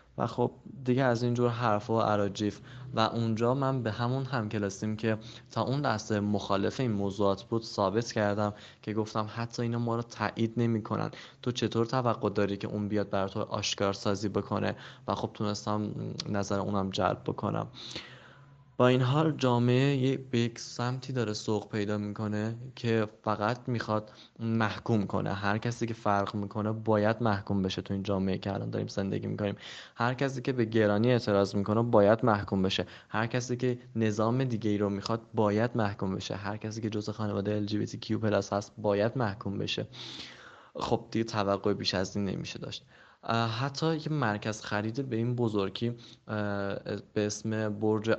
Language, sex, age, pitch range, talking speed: English, male, 20-39, 100-120 Hz, 170 wpm